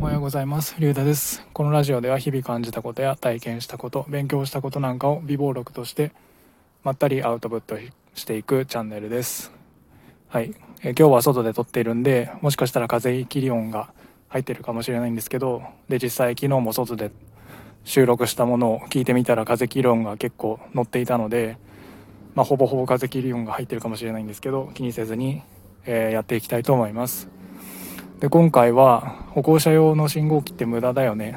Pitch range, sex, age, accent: 115-140 Hz, male, 20-39, native